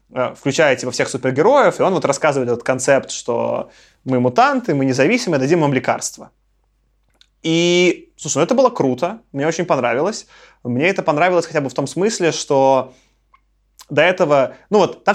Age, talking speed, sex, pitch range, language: 20-39, 165 wpm, male, 130-180 Hz, Russian